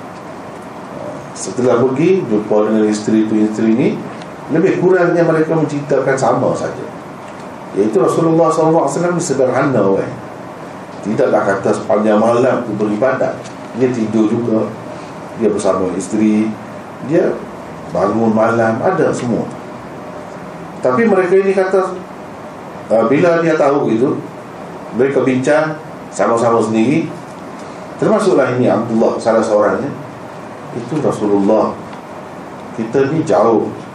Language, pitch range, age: Malay, 105-150 Hz, 40-59